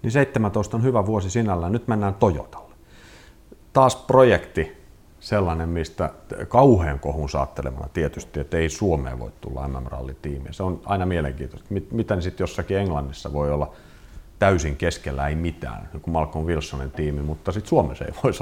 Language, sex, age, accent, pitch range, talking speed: Finnish, male, 40-59, native, 75-100 Hz, 160 wpm